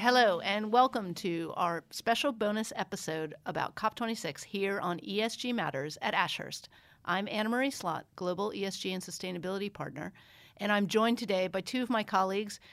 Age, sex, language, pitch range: 40-59, female, English, 175-215 Hz